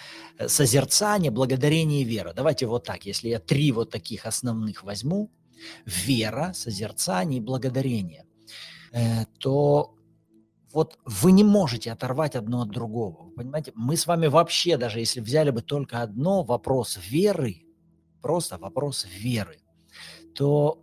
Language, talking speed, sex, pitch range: Russian, 125 wpm, male, 115-165 Hz